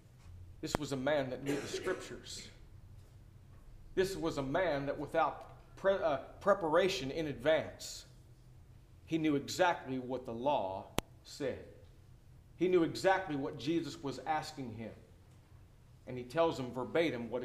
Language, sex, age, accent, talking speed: English, male, 40-59, American, 135 wpm